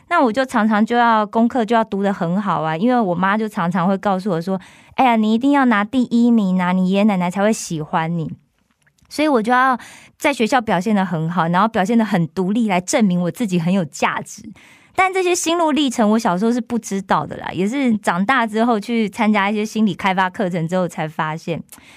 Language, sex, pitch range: Korean, female, 185-245 Hz